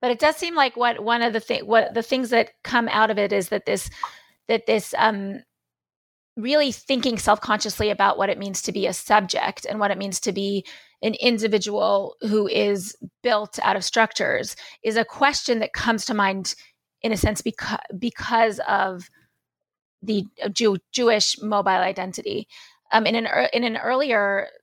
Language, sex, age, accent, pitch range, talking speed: English, female, 30-49, American, 195-235 Hz, 185 wpm